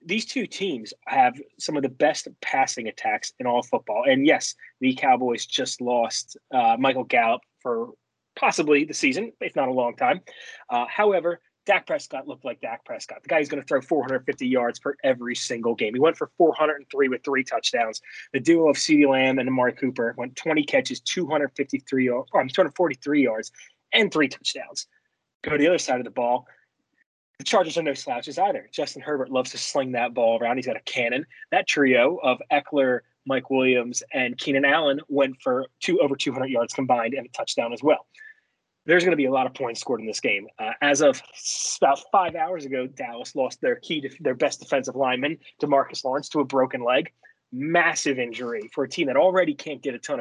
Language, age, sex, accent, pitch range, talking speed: English, 30-49, male, American, 130-185 Hz, 200 wpm